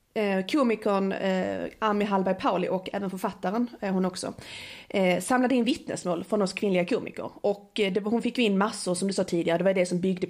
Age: 30-49